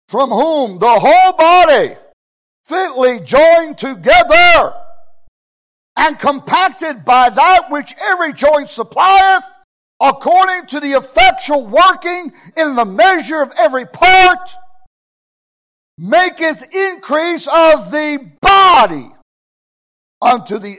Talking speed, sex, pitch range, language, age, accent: 100 wpm, male, 215-335 Hz, English, 60-79, American